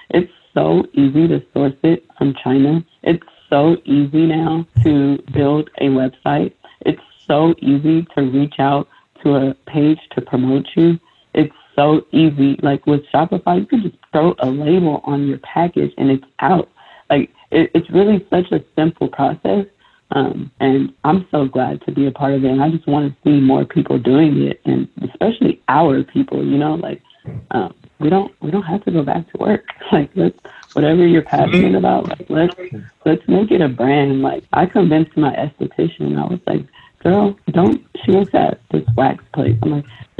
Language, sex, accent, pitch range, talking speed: English, female, American, 135-170 Hz, 185 wpm